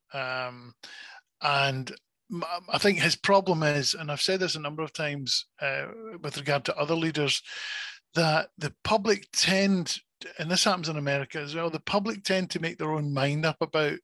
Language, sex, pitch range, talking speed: English, male, 135-175 Hz, 180 wpm